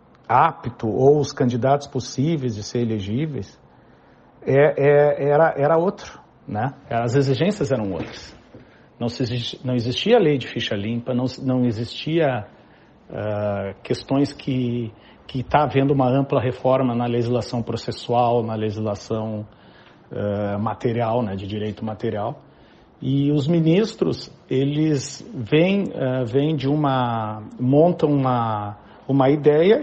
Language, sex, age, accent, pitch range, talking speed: Portuguese, male, 50-69, Brazilian, 120-155 Hz, 125 wpm